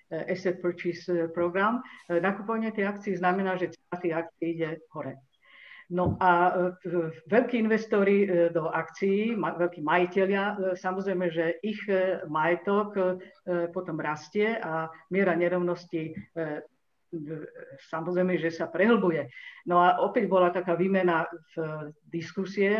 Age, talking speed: 50-69, 110 wpm